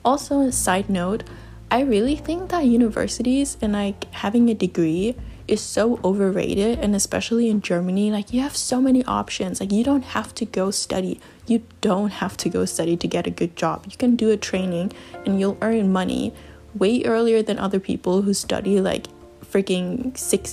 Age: 10-29